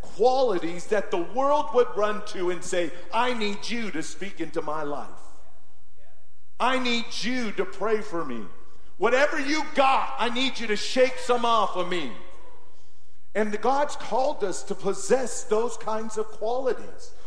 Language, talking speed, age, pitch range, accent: English, 160 wpm, 50-69, 200-260 Hz, American